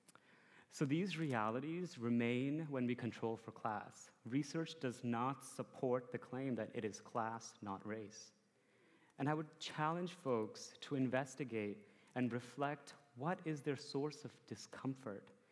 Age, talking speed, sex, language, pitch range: 30-49, 140 wpm, male, English, 115-155 Hz